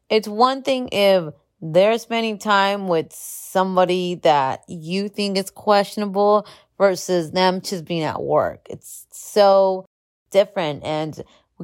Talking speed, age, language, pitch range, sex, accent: 130 wpm, 30-49, English, 150-190 Hz, female, American